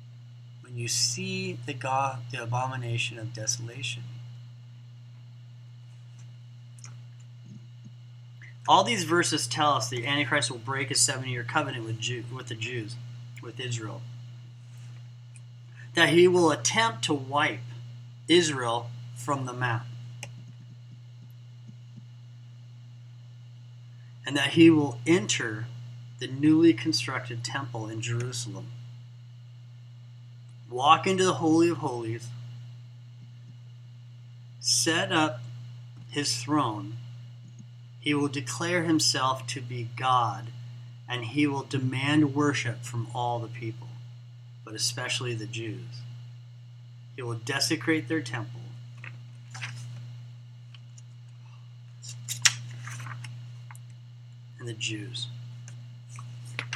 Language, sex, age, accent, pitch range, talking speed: English, male, 30-49, American, 120-125 Hz, 90 wpm